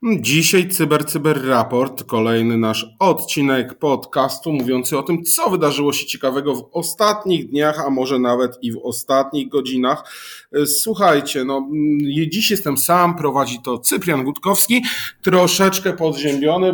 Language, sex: Polish, male